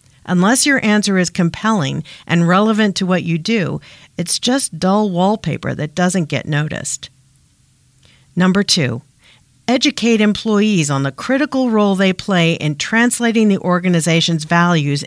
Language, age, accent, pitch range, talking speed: English, 50-69, American, 155-205 Hz, 135 wpm